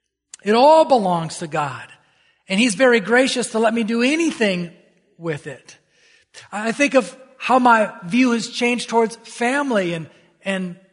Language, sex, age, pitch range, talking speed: English, male, 40-59, 155-220 Hz, 155 wpm